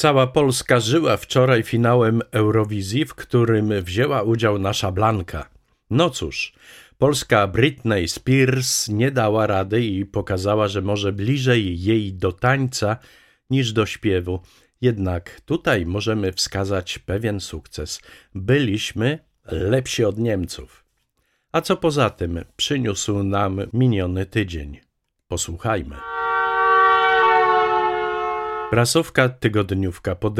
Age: 50-69